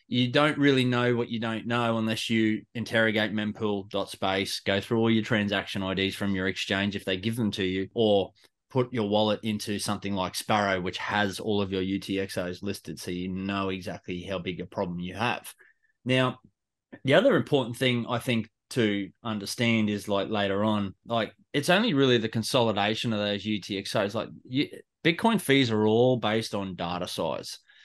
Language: English